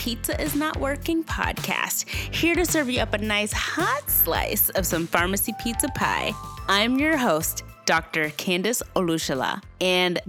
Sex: female